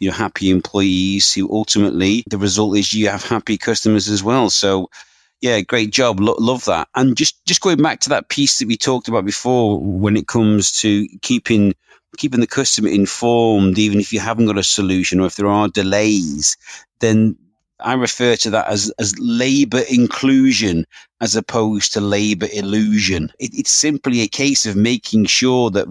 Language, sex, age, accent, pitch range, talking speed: English, male, 30-49, British, 105-125 Hz, 175 wpm